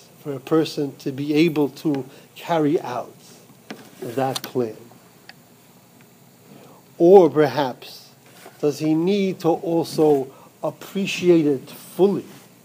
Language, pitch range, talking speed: English, 155-215 Hz, 100 wpm